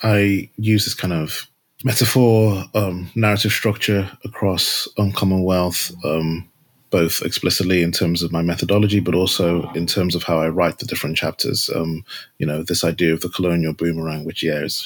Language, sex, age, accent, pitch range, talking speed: English, male, 30-49, British, 85-95 Hz, 170 wpm